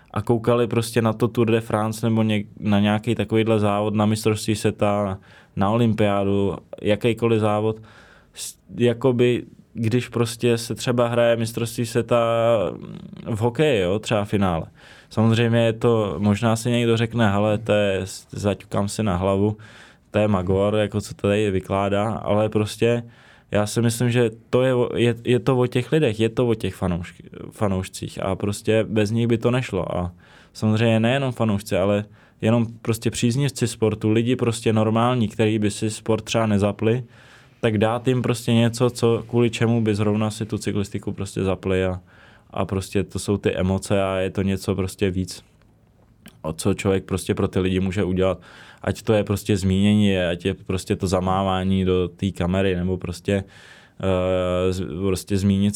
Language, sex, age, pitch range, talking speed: Czech, male, 20-39, 95-115 Hz, 160 wpm